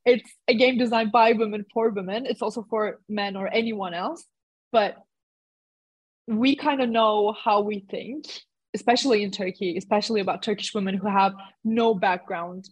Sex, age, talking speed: female, 20-39, 160 wpm